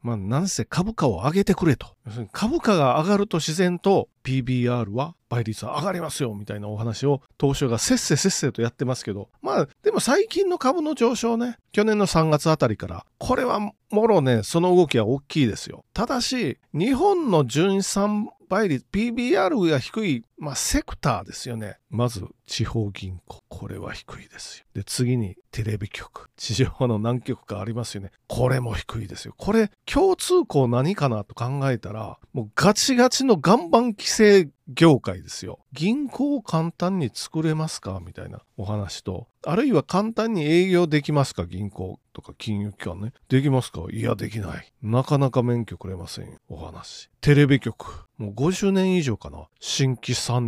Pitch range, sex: 110-175 Hz, male